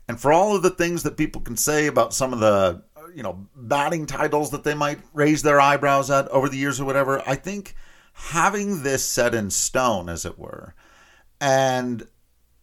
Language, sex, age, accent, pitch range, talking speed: English, male, 50-69, American, 110-150 Hz, 195 wpm